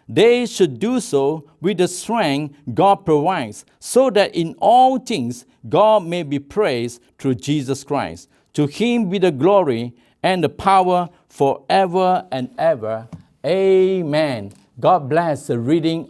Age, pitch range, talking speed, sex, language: 60-79, 145-205 Hz, 140 wpm, male, English